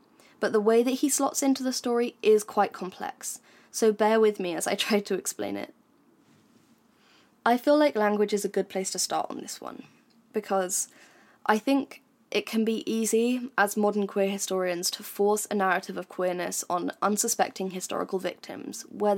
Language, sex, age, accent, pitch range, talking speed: English, female, 10-29, British, 195-240 Hz, 180 wpm